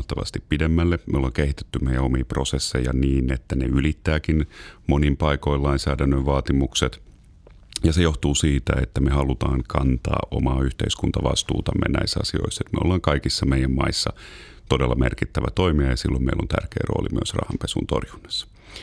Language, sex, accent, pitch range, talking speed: Finnish, male, native, 65-90 Hz, 140 wpm